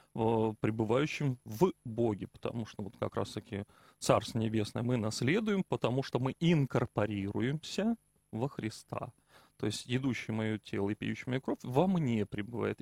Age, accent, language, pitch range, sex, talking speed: 30-49, native, Russian, 115-150 Hz, male, 140 wpm